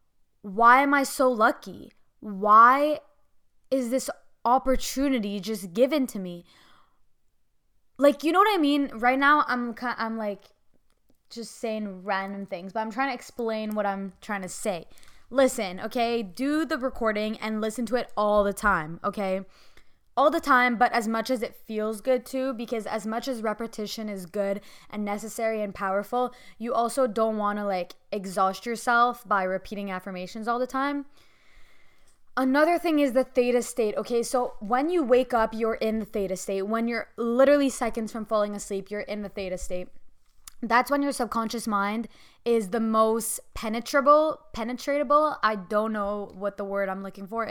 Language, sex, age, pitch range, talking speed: English, female, 10-29, 205-250 Hz, 170 wpm